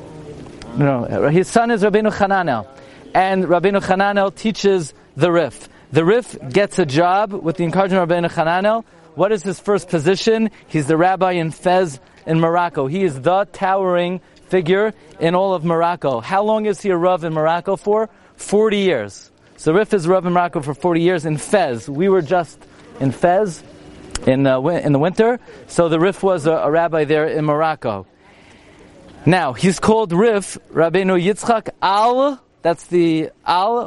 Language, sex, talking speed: English, male, 170 wpm